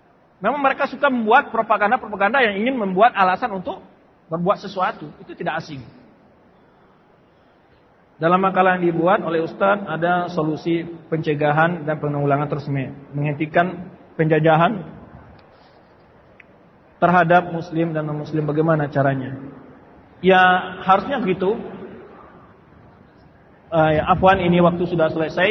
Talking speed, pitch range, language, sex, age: 105 wpm, 165-210 Hz, Malay, male, 40-59